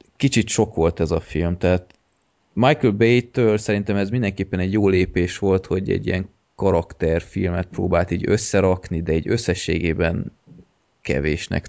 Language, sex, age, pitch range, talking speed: Hungarian, male, 20-39, 85-100 Hz, 140 wpm